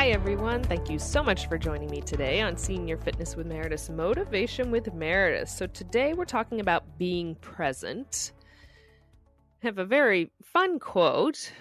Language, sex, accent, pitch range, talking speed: English, female, American, 150-195 Hz, 160 wpm